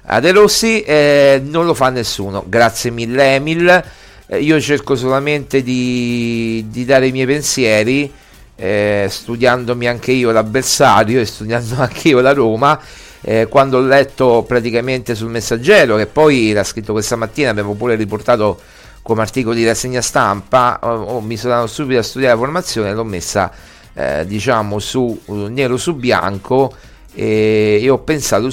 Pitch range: 105-135 Hz